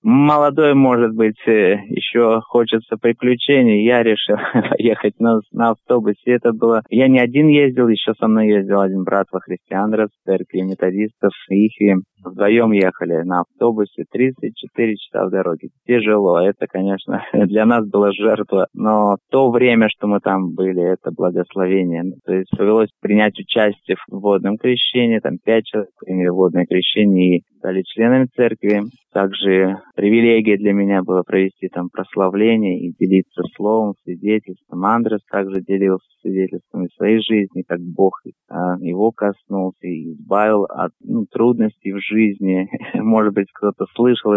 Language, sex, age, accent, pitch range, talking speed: Russian, male, 20-39, native, 95-115 Hz, 145 wpm